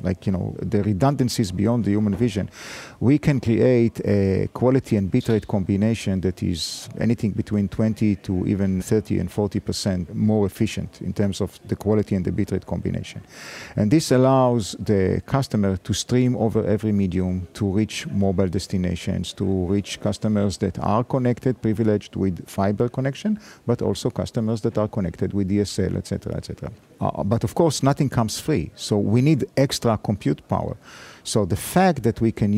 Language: English